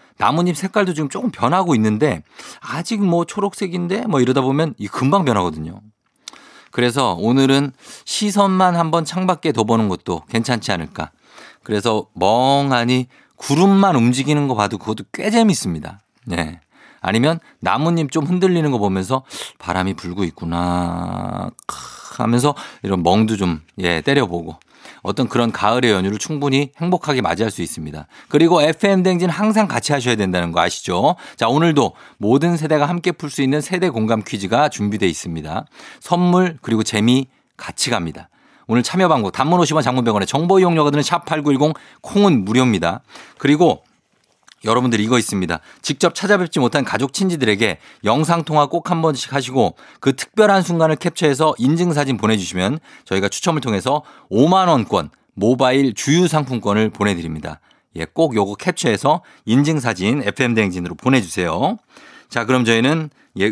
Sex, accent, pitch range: male, native, 105-160 Hz